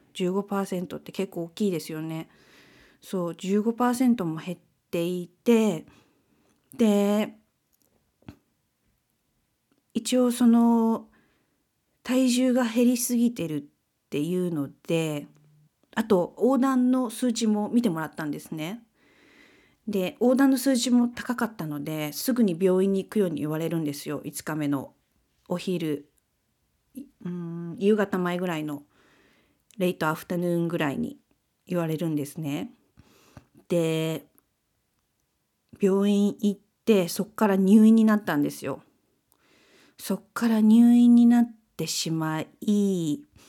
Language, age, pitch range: Japanese, 40-59, 160-225 Hz